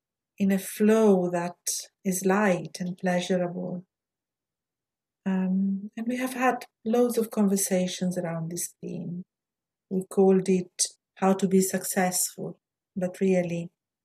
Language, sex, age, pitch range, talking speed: English, female, 50-69, 185-210 Hz, 120 wpm